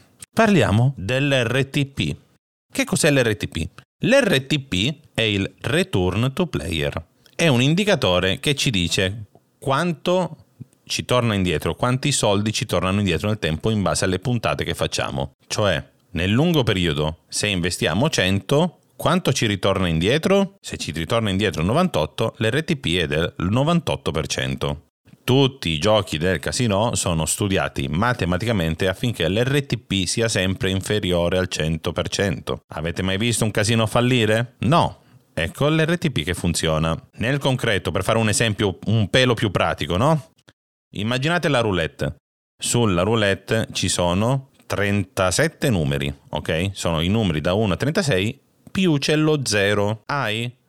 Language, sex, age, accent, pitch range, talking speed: Italian, male, 40-59, native, 90-130 Hz, 135 wpm